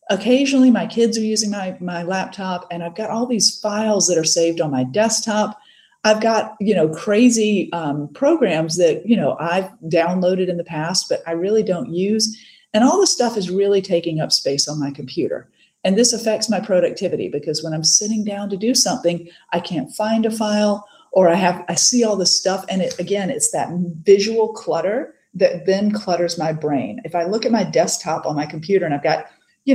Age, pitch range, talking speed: 40-59, 170-230 Hz, 210 wpm